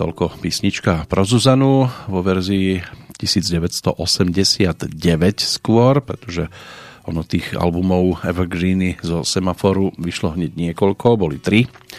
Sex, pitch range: male, 90-115 Hz